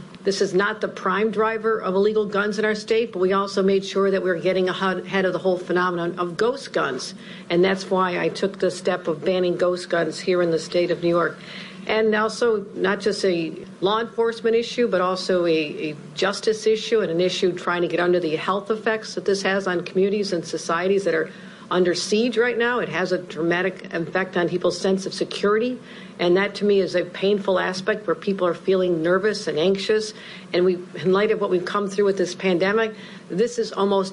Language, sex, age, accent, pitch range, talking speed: English, female, 50-69, American, 180-205 Hz, 220 wpm